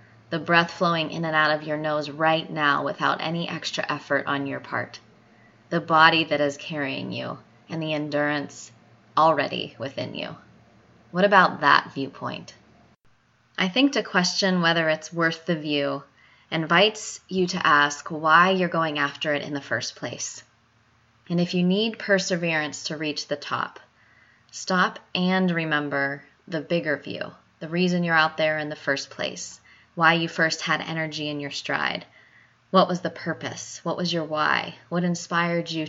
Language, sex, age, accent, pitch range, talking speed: English, female, 20-39, American, 150-180 Hz, 165 wpm